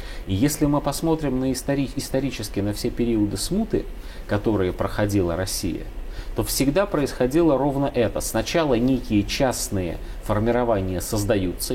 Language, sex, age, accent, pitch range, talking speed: Russian, male, 30-49, native, 95-120 Hz, 115 wpm